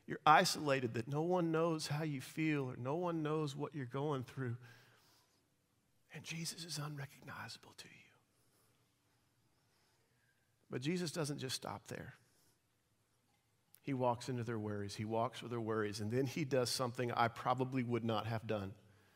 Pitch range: 120-175 Hz